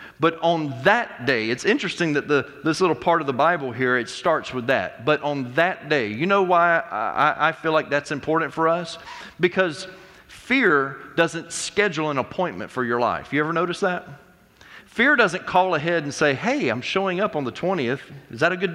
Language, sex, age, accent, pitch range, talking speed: English, male, 40-59, American, 150-190 Hz, 200 wpm